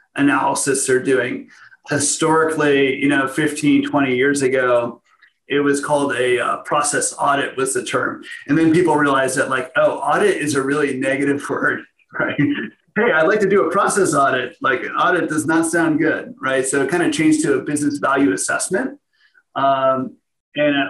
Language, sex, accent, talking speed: English, male, American, 180 wpm